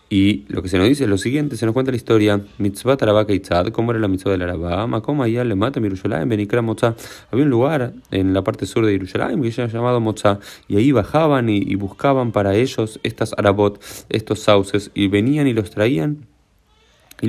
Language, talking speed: Spanish, 210 wpm